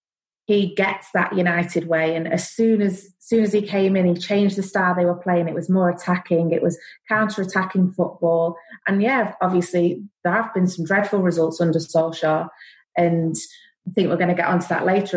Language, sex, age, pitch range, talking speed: Persian, female, 30-49, 175-195 Hz, 200 wpm